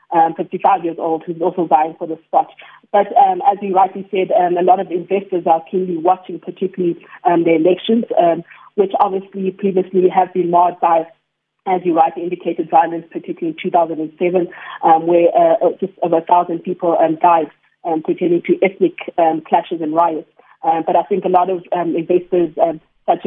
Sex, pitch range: female, 170-190 Hz